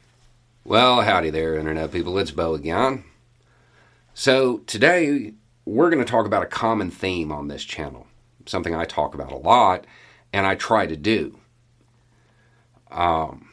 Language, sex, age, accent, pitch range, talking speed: English, male, 40-59, American, 85-120 Hz, 145 wpm